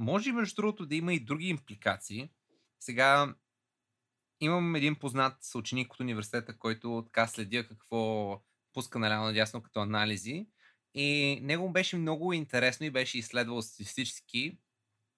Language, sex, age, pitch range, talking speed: Bulgarian, male, 20-39, 120-165 Hz, 130 wpm